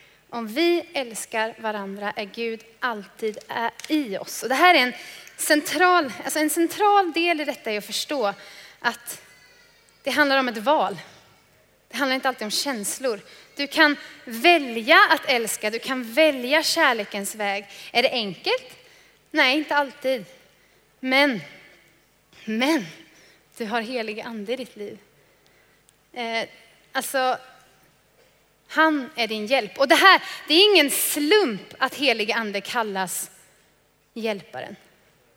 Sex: female